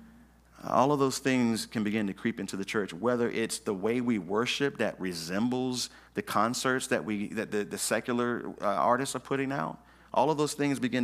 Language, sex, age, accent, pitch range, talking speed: English, male, 40-59, American, 110-145 Hz, 200 wpm